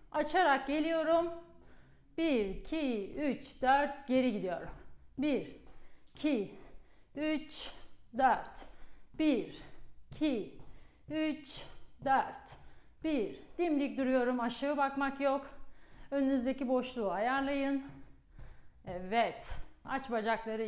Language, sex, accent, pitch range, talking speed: Turkish, female, native, 220-285 Hz, 80 wpm